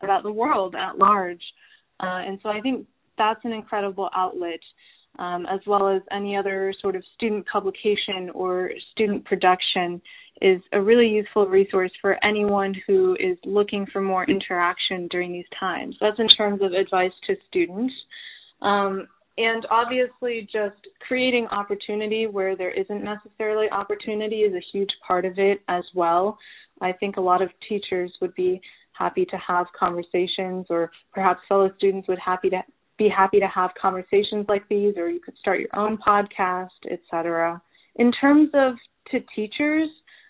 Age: 20-39